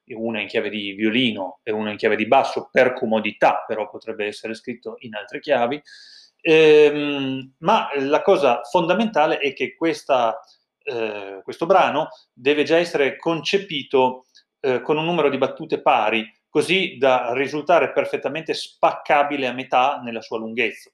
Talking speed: 145 wpm